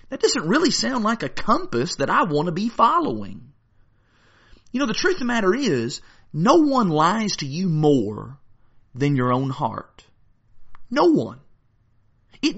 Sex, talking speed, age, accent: male, 160 wpm, 40-59, American